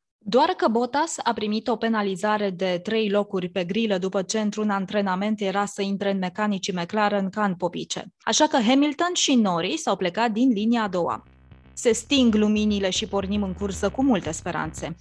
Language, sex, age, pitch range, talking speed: Romanian, female, 20-39, 185-230 Hz, 185 wpm